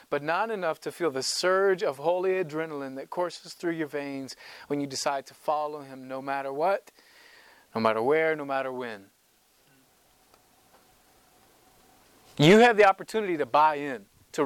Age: 30-49